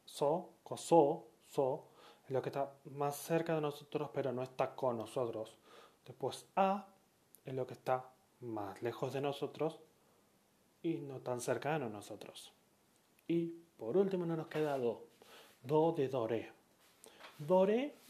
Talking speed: 145 wpm